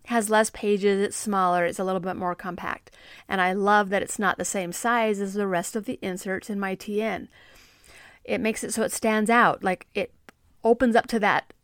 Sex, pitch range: female, 190-240 Hz